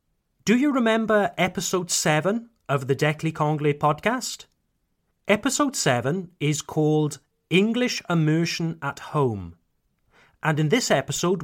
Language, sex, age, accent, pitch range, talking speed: French, male, 30-49, British, 140-190 Hz, 110 wpm